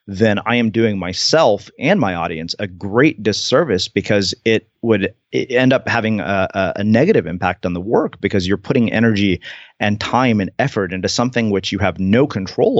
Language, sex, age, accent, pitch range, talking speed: English, male, 30-49, American, 95-110 Hz, 185 wpm